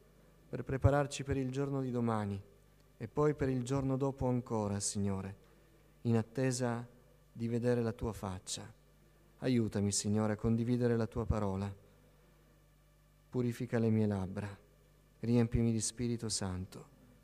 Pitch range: 115-145 Hz